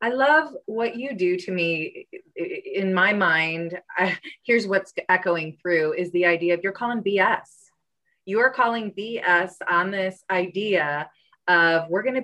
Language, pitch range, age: English, 175-230 Hz, 20-39